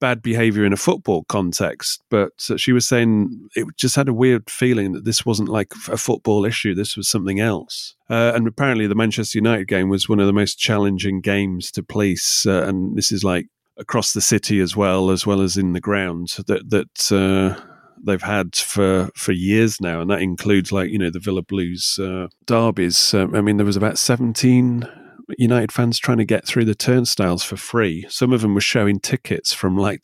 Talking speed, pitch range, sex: 210 wpm, 95-115 Hz, male